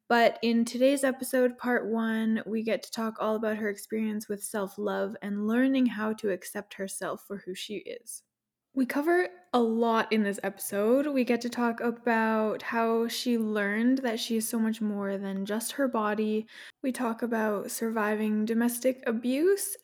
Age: 10-29